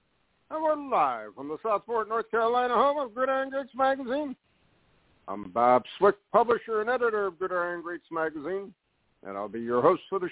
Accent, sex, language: American, male, English